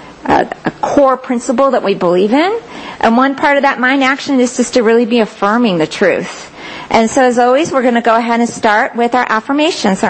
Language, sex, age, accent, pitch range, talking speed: English, female, 50-69, American, 215-280 Hz, 225 wpm